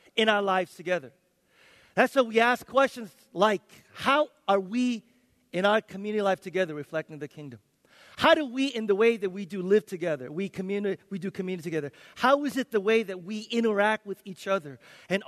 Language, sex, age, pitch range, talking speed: English, male, 40-59, 175-225 Hz, 200 wpm